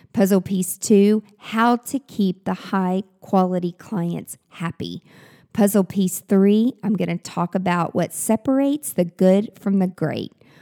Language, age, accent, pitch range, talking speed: English, 50-69, American, 175-210 Hz, 140 wpm